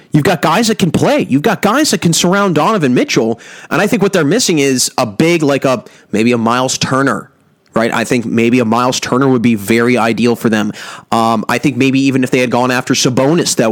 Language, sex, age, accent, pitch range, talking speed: English, male, 30-49, American, 125-170 Hz, 235 wpm